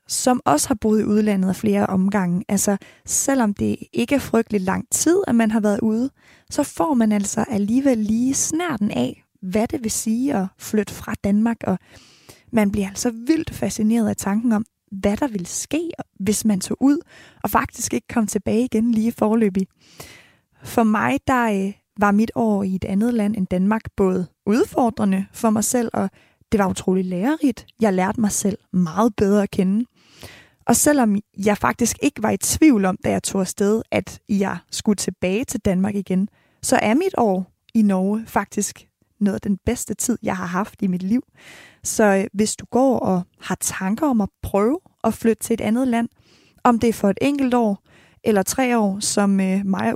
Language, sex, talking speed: Danish, female, 190 wpm